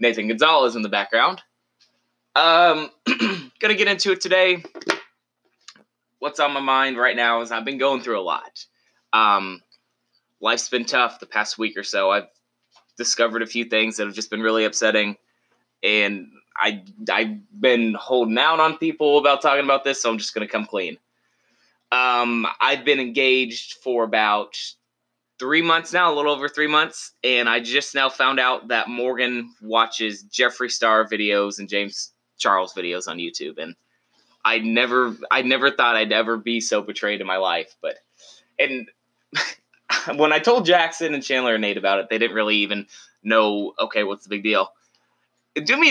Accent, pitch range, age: American, 110-150 Hz, 20-39